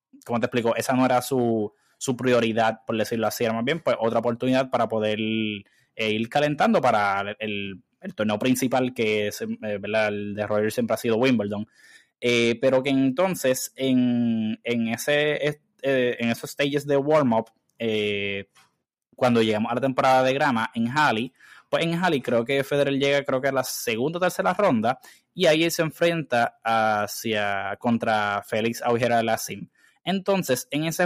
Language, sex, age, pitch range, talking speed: Spanish, male, 20-39, 110-140 Hz, 180 wpm